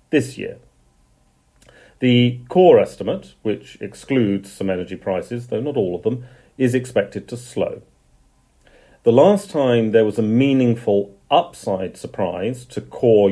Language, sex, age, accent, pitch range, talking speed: English, male, 40-59, British, 95-125 Hz, 135 wpm